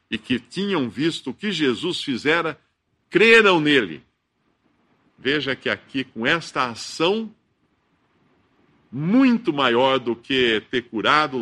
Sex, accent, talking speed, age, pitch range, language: male, Brazilian, 115 wpm, 50-69, 125-175 Hz, Portuguese